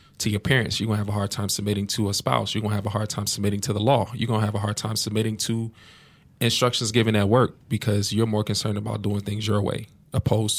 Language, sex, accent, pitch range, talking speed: English, male, American, 100-110 Hz, 270 wpm